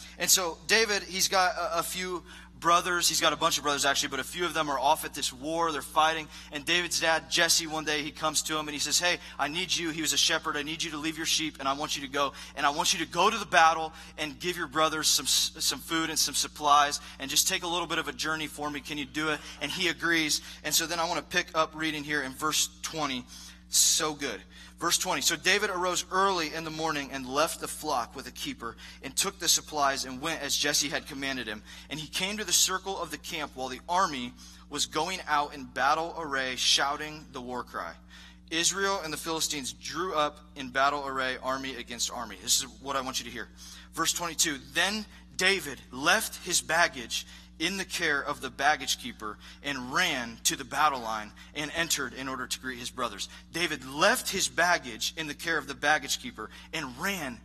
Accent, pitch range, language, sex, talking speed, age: American, 140-170 Hz, English, male, 235 wpm, 20-39